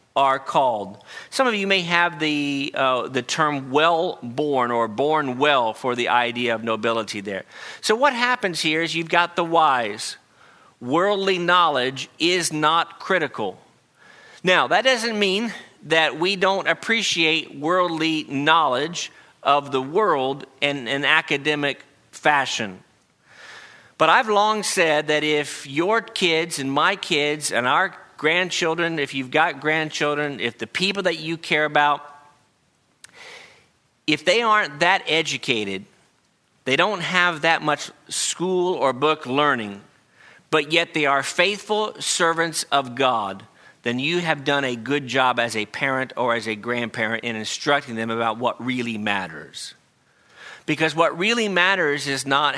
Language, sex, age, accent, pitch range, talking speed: English, male, 50-69, American, 130-170 Hz, 145 wpm